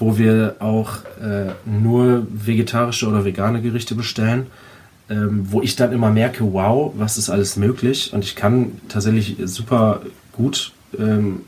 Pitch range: 105-125 Hz